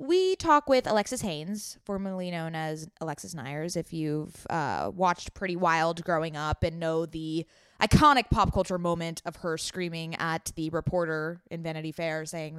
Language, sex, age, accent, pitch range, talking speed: English, female, 20-39, American, 170-215 Hz, 165 wpm